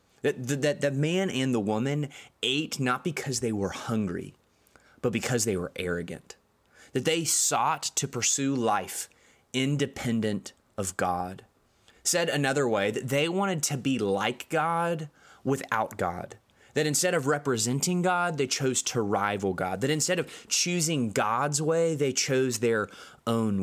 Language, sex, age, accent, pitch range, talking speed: English, male, 20-39, American, 105-135 Hz, 145 wpm